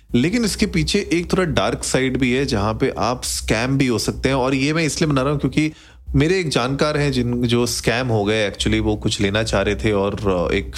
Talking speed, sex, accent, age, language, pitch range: 240 wpm, male, native, 30-49, Hindi, 105-135 Hz